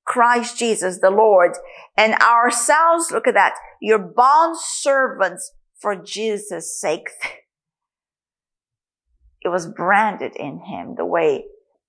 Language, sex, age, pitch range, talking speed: English, female, 50-69, 195-315 Hz, 110 wpm